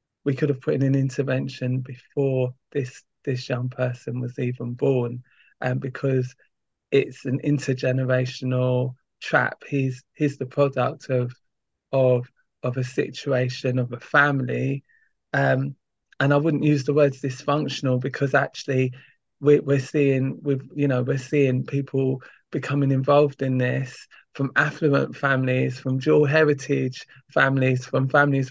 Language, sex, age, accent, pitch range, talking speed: English, male, 20-39, British, 135-160 Hz, 140 wpm